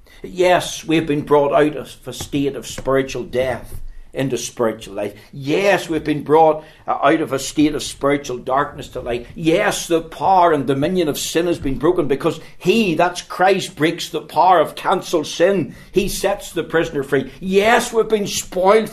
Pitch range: 145-220 Hz